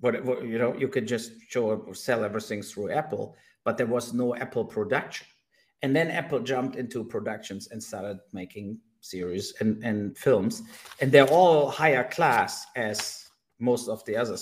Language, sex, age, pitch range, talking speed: English, male, 50-69, 115-135 Hz, 170 wpm